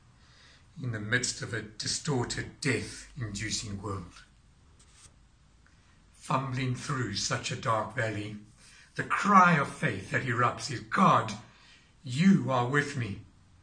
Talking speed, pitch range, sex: 115 wpm, 95-130 Hz, male